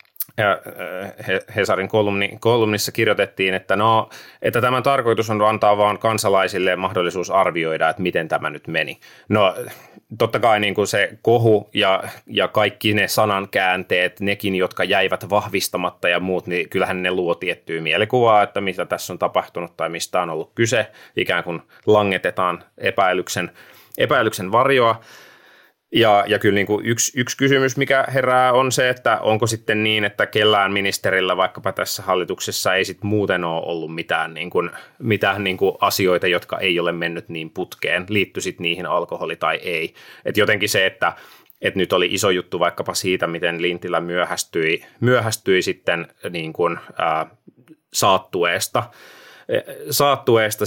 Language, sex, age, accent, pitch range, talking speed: Finnish, male, 30-49, native, 90-110 Hz, 150 wpm